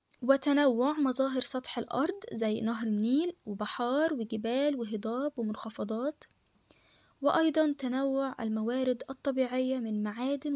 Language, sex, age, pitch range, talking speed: Arabic, female, 10-29, 230-280 Hz, 95 wpm